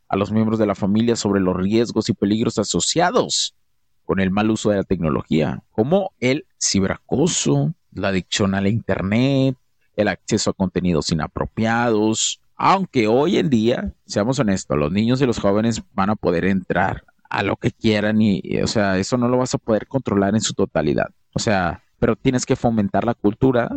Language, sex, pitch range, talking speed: Spanish, male, 100-130 Hz, 180 wpm